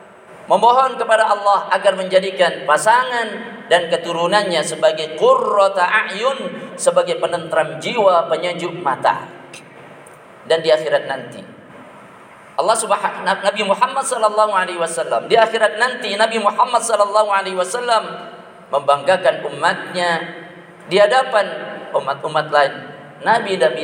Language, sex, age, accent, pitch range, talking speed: Indonesian, male, 50-69, native, 175-235 Hz, 105 wpm